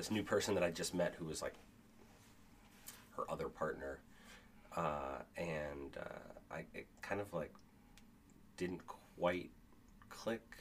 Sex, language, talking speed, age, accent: male, English, 125 wpm, 30-49, American